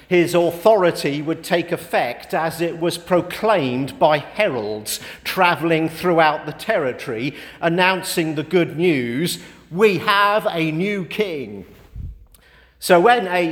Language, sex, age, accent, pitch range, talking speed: English, male, 50-69, British, 155-190 Hz, 120 wpm